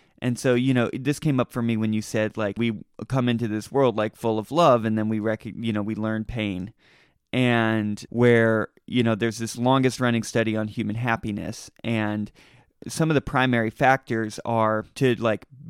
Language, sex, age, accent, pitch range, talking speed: English, male, 30-49, American, 110-130 Hz, 190 wpm